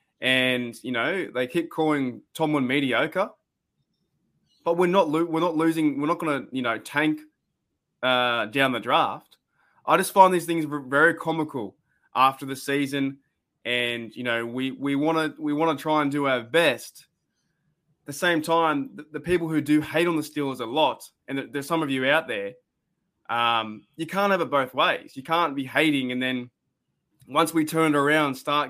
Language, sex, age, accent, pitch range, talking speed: English, male, 20-39, Australian, 130-160 Hz, 190 wpm